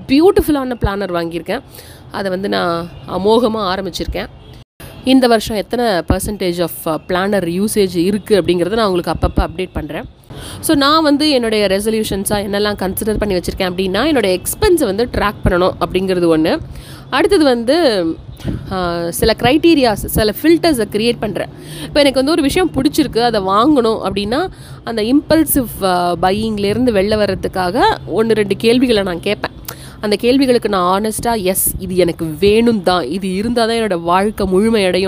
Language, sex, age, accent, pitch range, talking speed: Tamil, female, 30-49, native, 180-240 Hz, 140 wpm